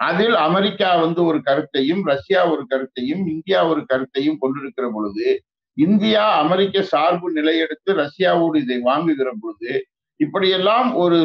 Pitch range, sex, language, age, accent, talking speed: 155-200 Hz, male, Tamil, 50-69, native, 125 wpm